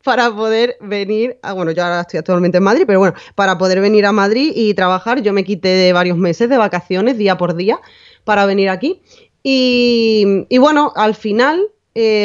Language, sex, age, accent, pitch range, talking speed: Spanish, female, 20-39, Spanish, 185-235 Hz, 195 wpm